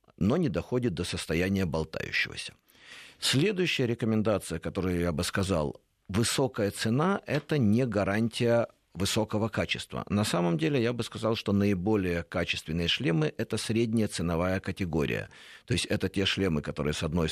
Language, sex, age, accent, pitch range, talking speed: Russian, male, 50-69, native, 85-115 Hz, 140 wpm